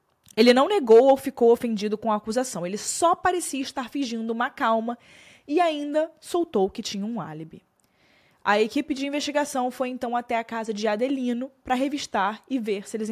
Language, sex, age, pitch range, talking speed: Portuguese, female, 20-39, 215-275 Hz, 185 wpm